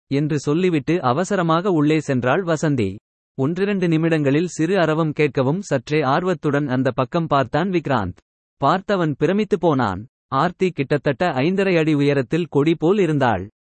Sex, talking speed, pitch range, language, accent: male, 125 wpm, 130-170 Hz, Tamil, native